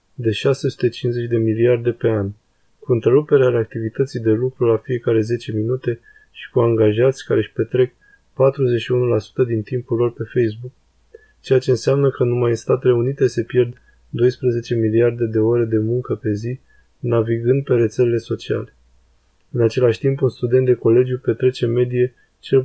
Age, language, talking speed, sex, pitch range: 20-39, Romanian, 155 wpm, male, 115-130 Hz